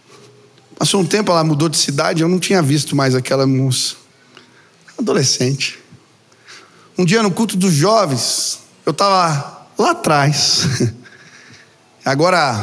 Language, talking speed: Portuguese, 130 wpm